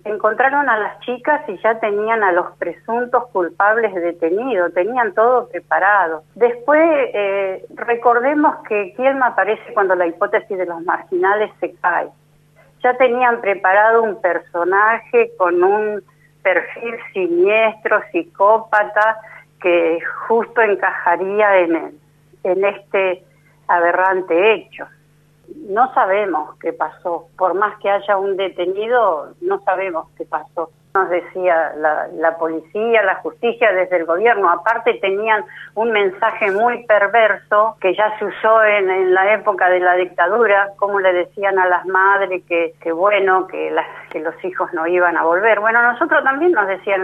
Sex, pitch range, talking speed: female, 180-225 Hz, 140 wpm